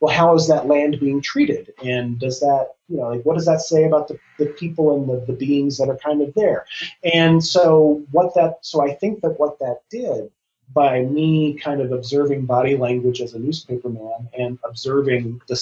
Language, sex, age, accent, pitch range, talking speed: English, male, 30-49, American, 125-155 Hz, 210 wpm